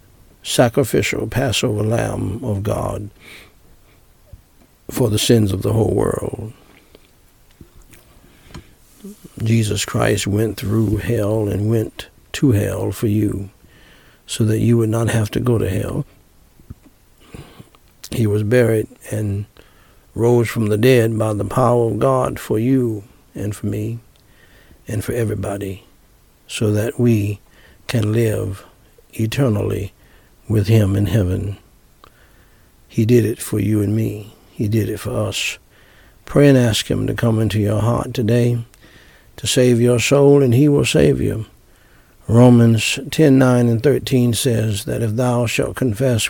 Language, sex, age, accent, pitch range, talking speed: English, male, 60-79, American, 105-120 Hz, 135 wpm